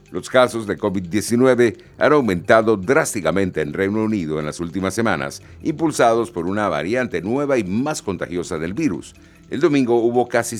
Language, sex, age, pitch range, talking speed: Spanish, male, 60-79, 85-115 Hz, 160 wpm